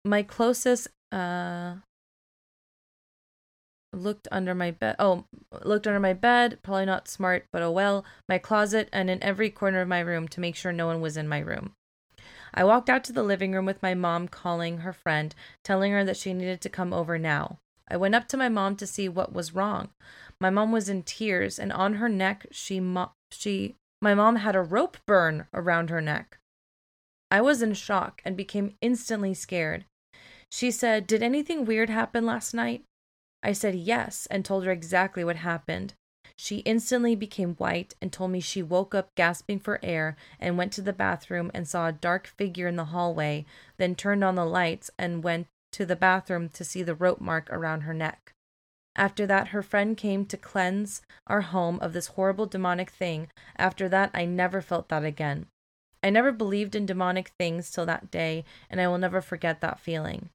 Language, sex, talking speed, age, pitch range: English, female, 195 wpm, 20-39, 170-205 Hz